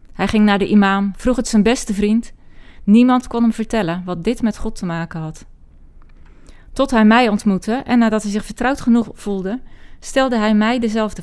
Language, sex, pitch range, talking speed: Dutch, female, 165-220 Hz, 190 wpm